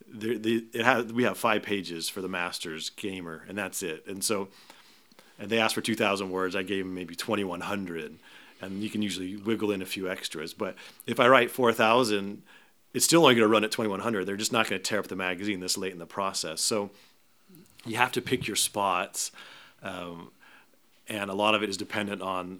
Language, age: English, 30-49